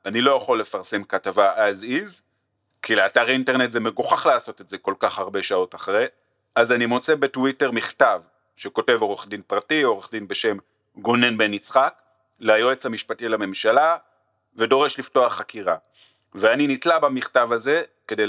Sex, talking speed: male, 150 wpm